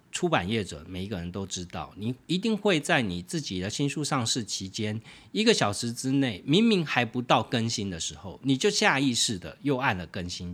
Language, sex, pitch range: Chinese, male, 90-140 Hz